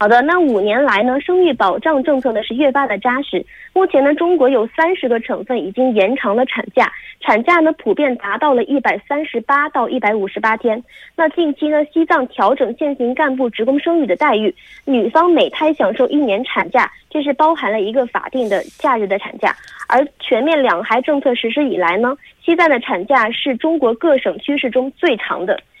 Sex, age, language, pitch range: female, 20-39, Korean, 245-320 Hz